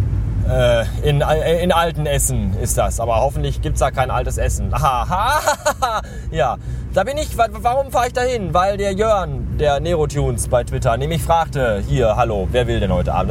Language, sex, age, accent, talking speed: German, male, 20-39, German, 205 wpm